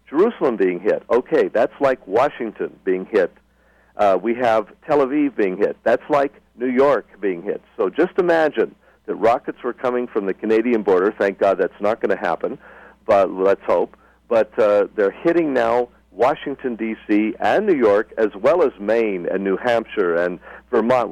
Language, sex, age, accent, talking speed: English, male, 50-69, American, 175 wpm